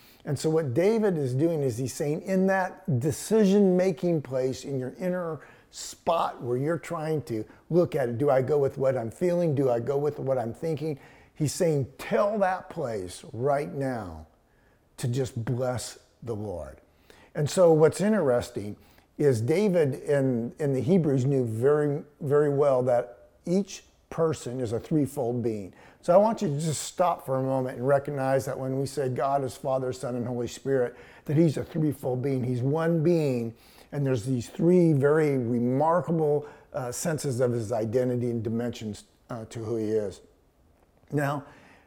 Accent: American